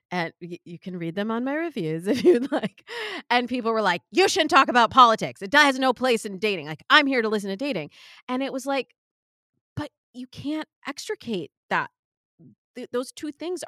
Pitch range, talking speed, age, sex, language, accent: 180-255 Hz, 200 wpm, 30-49, female, English, American